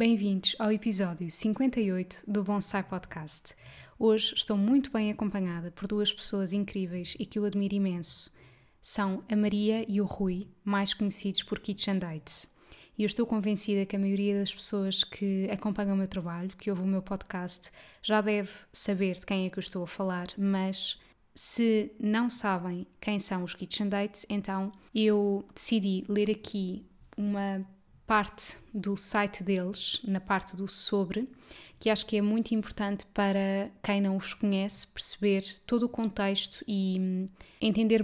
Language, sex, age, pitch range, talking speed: Portuguese, female, 20-39, 190-210 Hz, 160 wpm